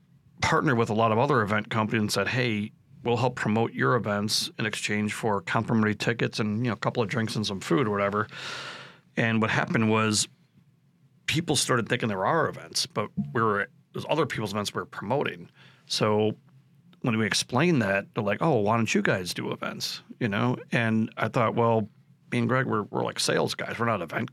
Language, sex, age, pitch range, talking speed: English, male, 40-59, 105-135 Hz, 210 wpm